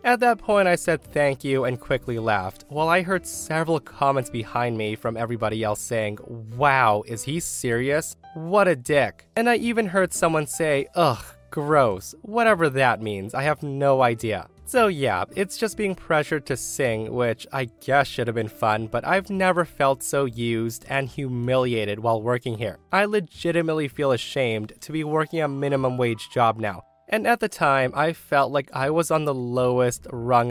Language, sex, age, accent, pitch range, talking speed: English, male, 20-39, American, 115-160 Hz, 185 wpm